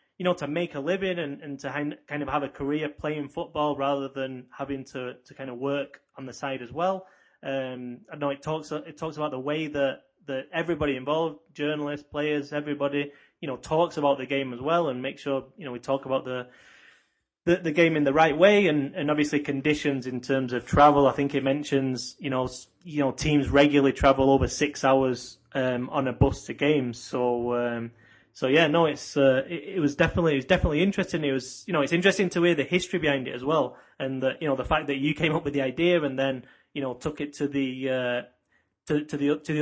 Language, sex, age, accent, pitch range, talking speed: English, male, 20-39, British, 130-155 Hz, 235 wpm